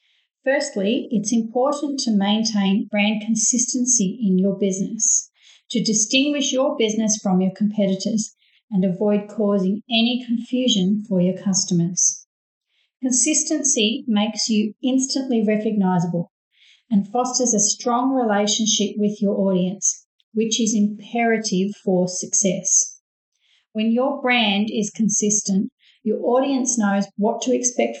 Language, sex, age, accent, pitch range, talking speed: English, female, 40-59, Australian, 200-245 Hz, 115 wpm